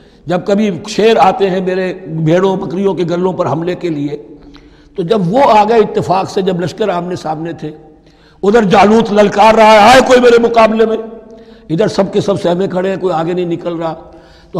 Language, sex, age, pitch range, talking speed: Urdu, male, 60-79, 160-205 Hz, 195 wpm